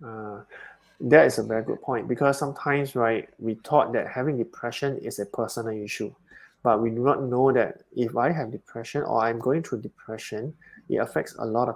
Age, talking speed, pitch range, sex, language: 20-39, 200 wpm, 115-140 Hz, male, English